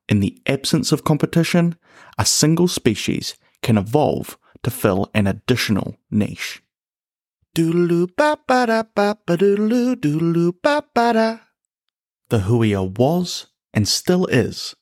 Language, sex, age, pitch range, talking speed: English, male, 30-49, 105-165 Hz, 85 wpm